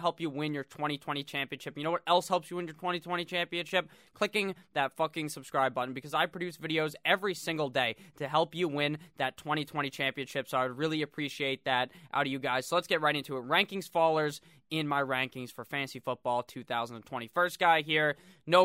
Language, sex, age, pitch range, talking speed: English, male, 20-39, 140-170 Hz, 205 wpm